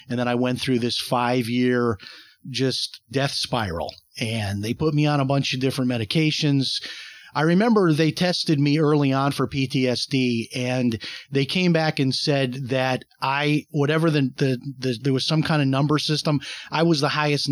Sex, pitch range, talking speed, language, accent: male, 130-160 Hz, 180 wpm, English, American